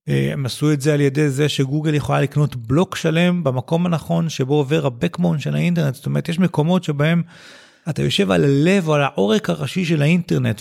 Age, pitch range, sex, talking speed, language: 30-49, 130-165 Hz, male, 190 wpm, Hebrew